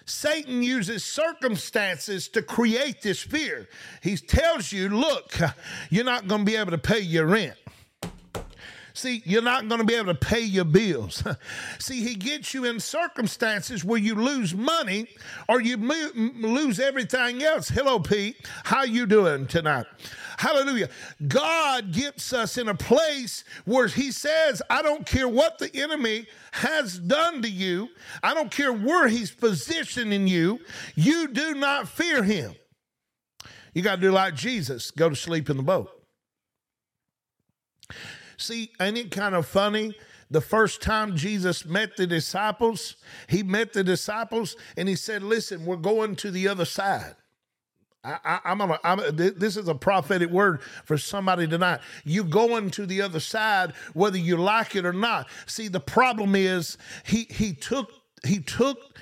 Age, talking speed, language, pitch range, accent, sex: 50-69, 160 wpm, English, 185-245 Hz, American, male